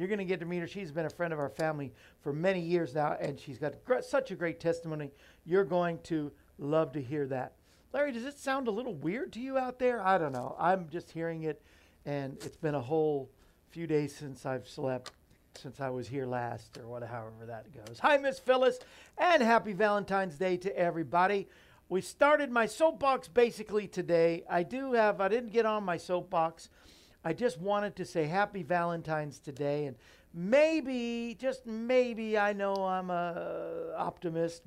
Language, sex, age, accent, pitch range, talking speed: English, male, 50-69, American, 145-215 Hz, 195 wpm